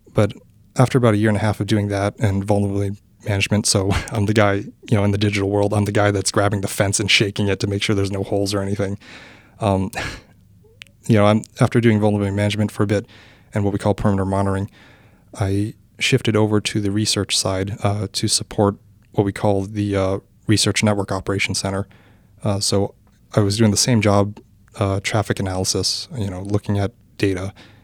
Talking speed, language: 205 wpm, English